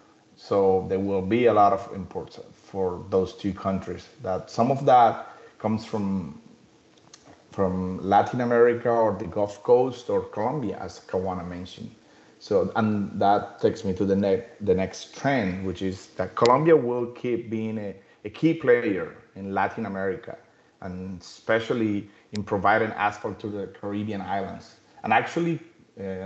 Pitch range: 95-120 Hz